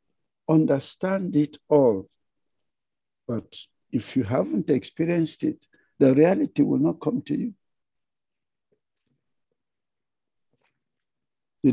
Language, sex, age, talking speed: English, male, 60-79, 85 wpm